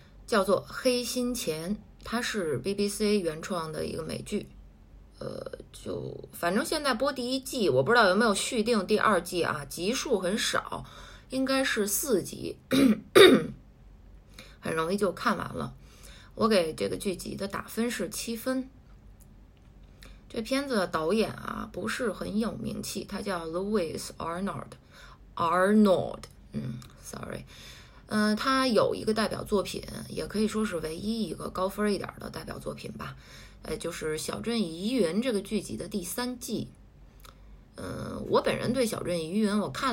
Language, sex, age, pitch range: Chinese, female, 20-39, 180-245 Hz